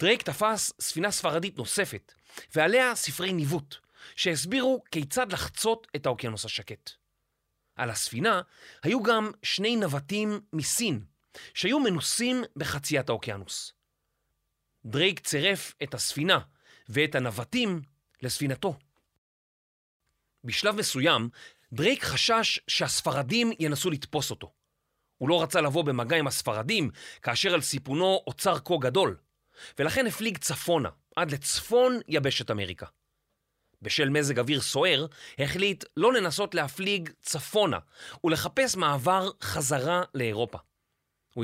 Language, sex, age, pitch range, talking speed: Hebrew, male, 30-49, 130-195 Hz, 105 wpm